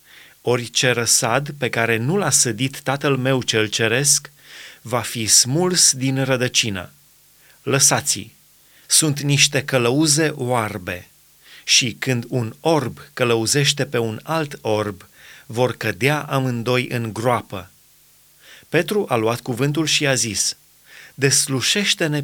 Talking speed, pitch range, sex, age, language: 115 wpm, 120-150 Hz, male, 30-49, Romanian